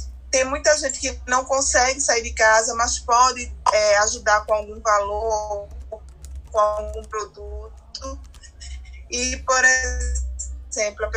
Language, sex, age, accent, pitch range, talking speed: Portuguese, female, 20-39, Brazilian, 205-255 Hz, 120 wpm